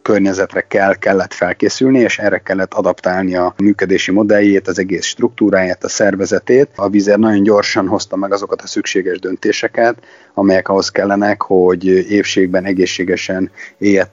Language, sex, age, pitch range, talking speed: Hungarian, male, 30-49, 95-105 Hz, 140 wpm